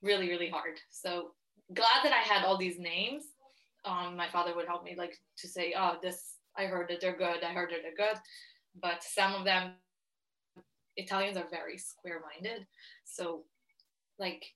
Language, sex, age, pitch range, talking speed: English, female, 20-39, 175-225 Hz, 175 wpm